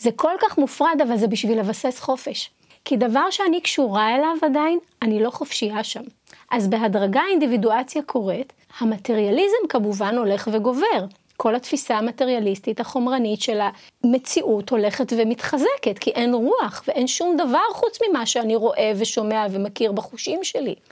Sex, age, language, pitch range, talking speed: female, 30-49, Hebrew, 220-285 Hz, 140 wpm